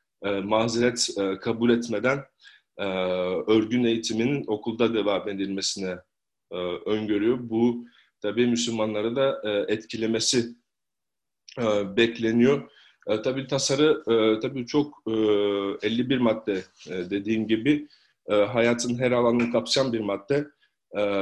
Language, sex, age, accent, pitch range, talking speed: Turkish, male, 40-59, native, 110-125 Hz, 115 wpm